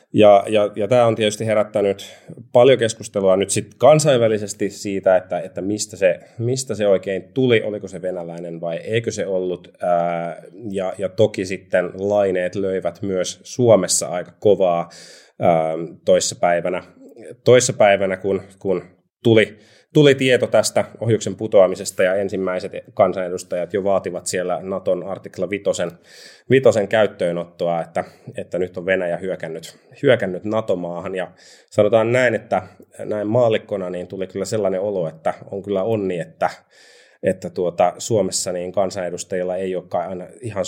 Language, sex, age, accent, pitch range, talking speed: Finnish, male, 30-49, native, 90-105 Hz, 135 wpm